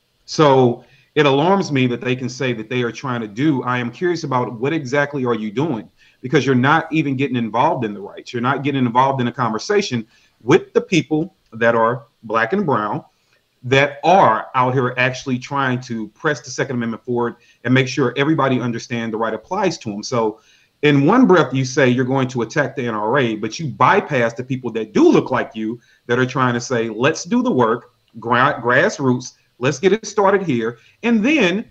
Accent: American